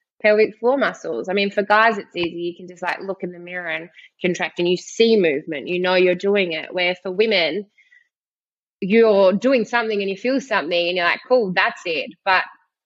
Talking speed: 210 wpm